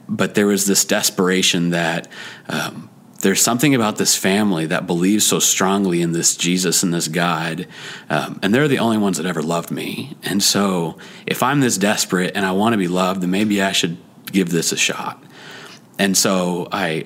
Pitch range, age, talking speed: 85-105 Hz, 30-49, 195 wpm